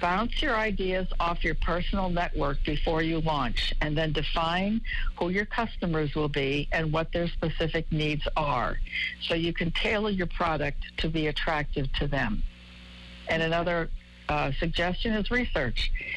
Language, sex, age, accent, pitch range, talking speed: English, female, 60-79, American, 150-185 Hz, 150 wpm